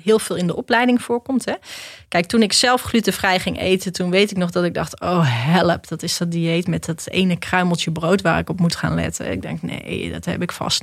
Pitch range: 170-210 Hz